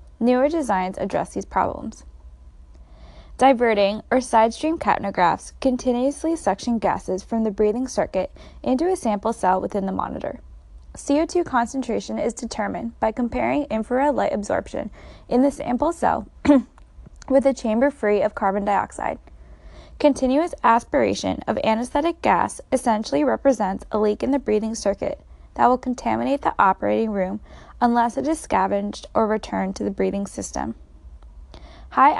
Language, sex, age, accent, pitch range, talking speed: English, female, 10-29, American, 195-265 Hz, 135 wpm